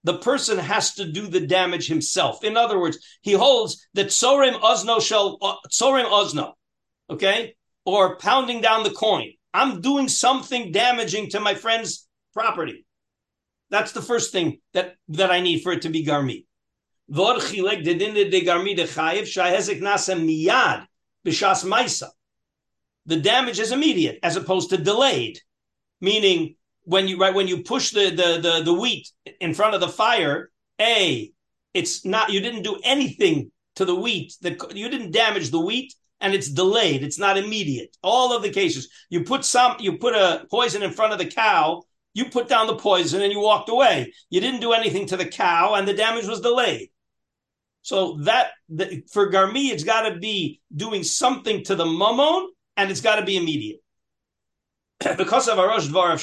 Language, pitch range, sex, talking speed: English, 180-245 Hz, male, 165 wpm